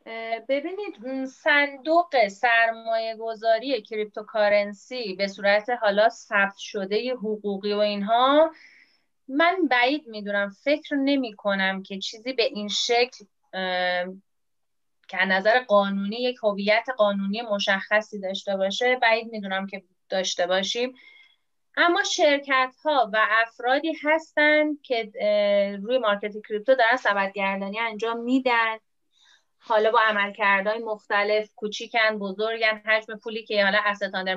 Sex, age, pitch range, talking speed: female, 30-49, 205-265 Hz, 110 wpm